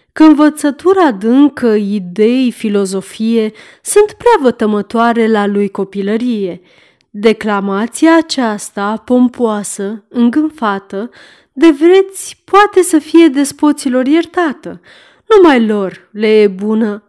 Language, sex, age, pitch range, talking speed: Romanian, female, 30-49, 210-295 Hz, 100 wpm